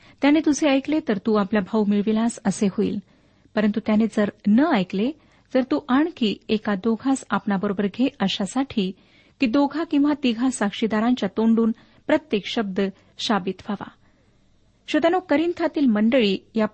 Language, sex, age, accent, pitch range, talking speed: Marathi, female, 40-59, native, 205-275 Hz, 135 wpm